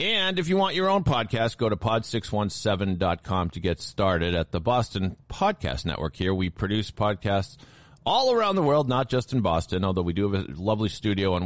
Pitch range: 85-125 Hz